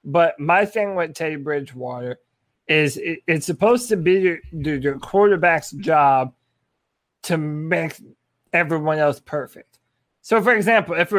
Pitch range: 160-205 Hz